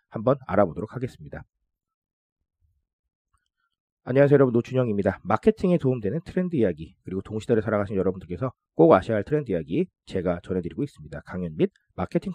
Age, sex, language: 40-59, male, Korean